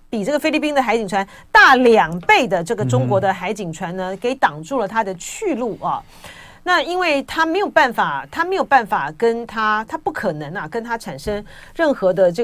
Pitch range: 180-260 Hz